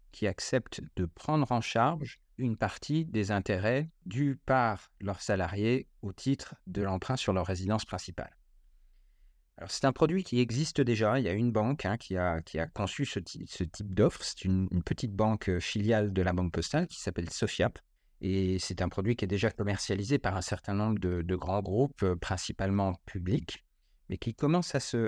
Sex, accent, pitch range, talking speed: male, French, 95-120 Hz, 190 wpm